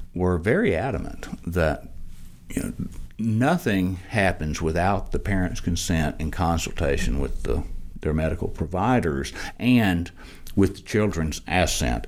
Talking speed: 120 wpm